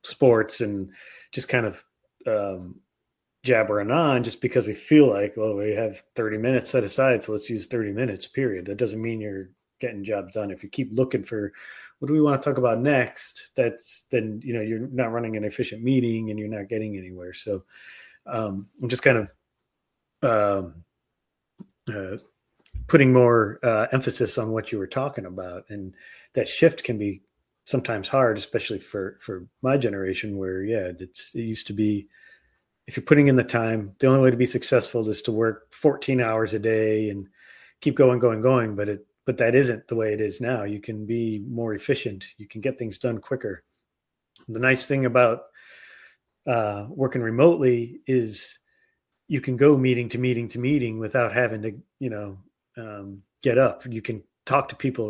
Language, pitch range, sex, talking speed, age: English, 105-130 Hz, male, 185 wpm, 30-49